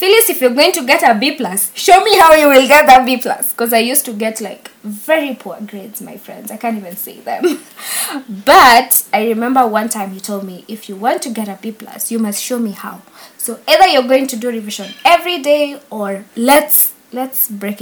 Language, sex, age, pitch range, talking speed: English, female, 20-39, 200-260 Hz, 220 wpm